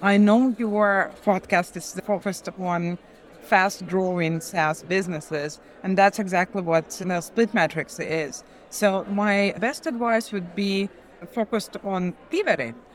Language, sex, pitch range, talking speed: English, female, 180-220 Hz, 135 wpm